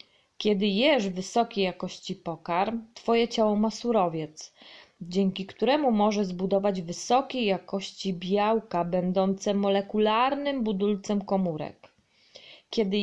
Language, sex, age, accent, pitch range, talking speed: Polish, female, 20-39, native, 185-230 Hz, 95 wpm